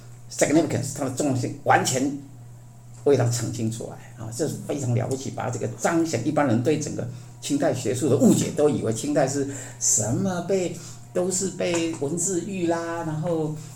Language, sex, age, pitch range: Chinese, male, 50-69, 120-160 Hz